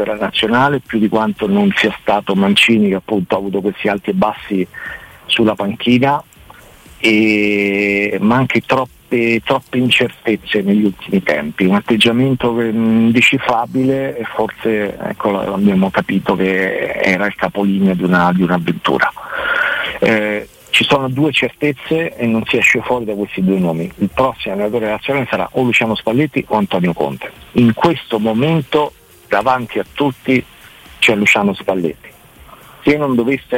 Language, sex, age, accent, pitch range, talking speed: Italian, male, 50-69, native, 100-125 Hz, 145 wpm